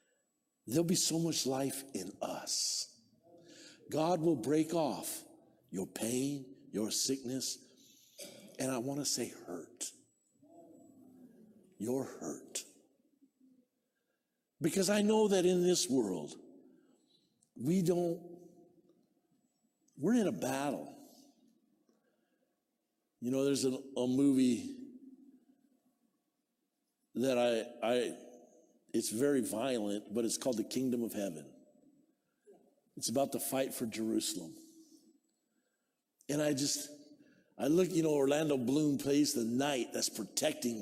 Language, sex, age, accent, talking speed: English, male, 60-79, American, 110 wpm